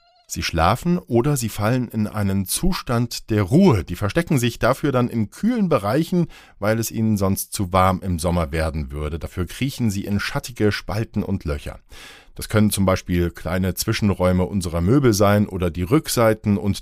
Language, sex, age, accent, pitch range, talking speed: German, male, 50-69, German, 90-125 Hz, 175 wpm